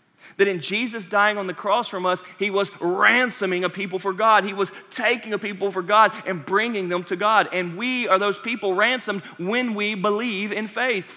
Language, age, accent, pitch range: English, 30-49, American, 185-230 Hz